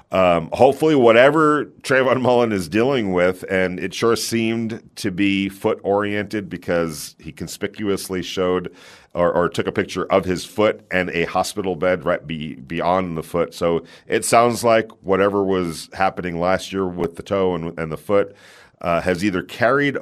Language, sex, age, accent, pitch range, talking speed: English, male, 40-59, American, 85-100 Hz, 170 wpm